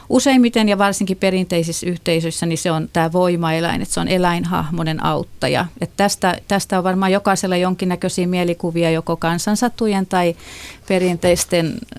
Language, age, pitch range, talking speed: Finnish, 30-49, 165-200 Hz, 125 wpm